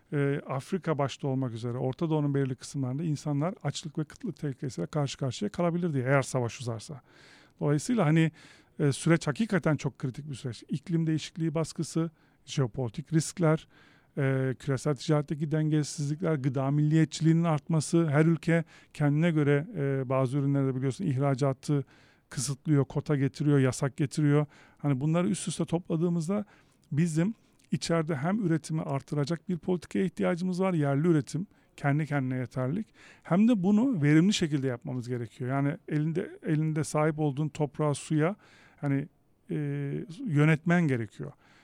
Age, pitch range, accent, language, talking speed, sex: 50-69, 140-165 Hz, native, Turkish, 130 wpm, male